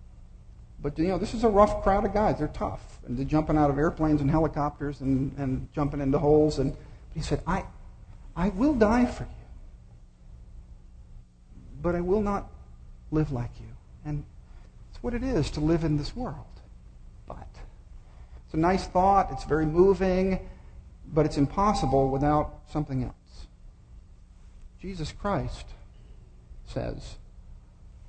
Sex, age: male, 50-69